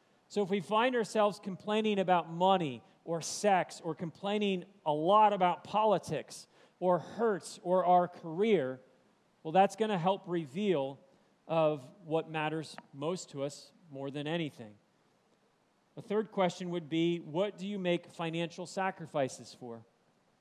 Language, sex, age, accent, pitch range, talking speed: English, male, 40-59, American, 160-195 Hz, 140 wpm